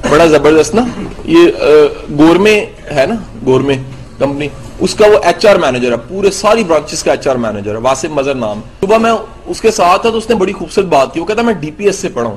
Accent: Indian